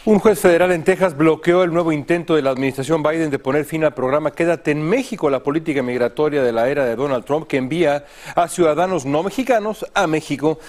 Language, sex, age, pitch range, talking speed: Spanish, male, 40-59, 130-160 Hz, 215 wpm